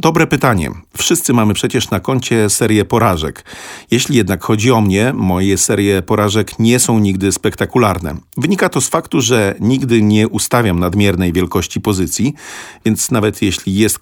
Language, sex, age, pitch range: Polish, male, 40-59, 95-125 Hz